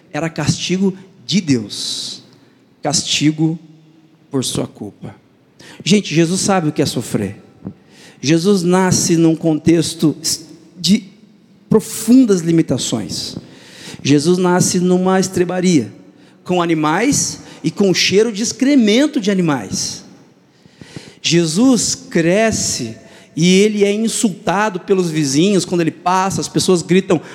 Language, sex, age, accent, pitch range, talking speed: Portuguese, male, 50-69, Brazilian, 160-205 Hz, 110 wpm